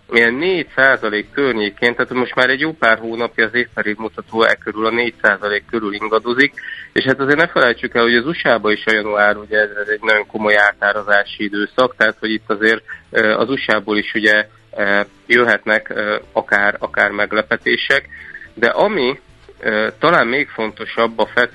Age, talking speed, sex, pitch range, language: 30-49, 160 wpm, male, 105-120 Hz, Hungarian